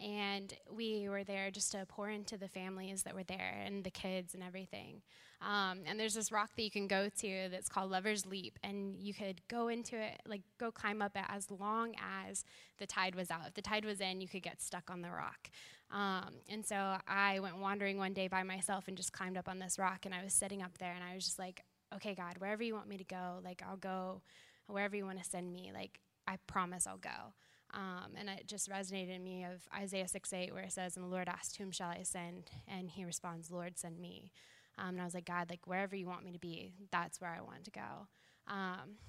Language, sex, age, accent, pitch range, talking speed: English, female, 10-29, American, 180-200 Hz, 245 wpm